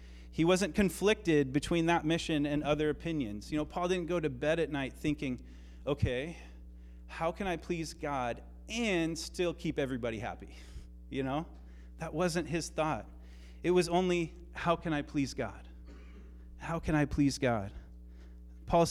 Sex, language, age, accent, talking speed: male, English, 30-49, American, 160 wpm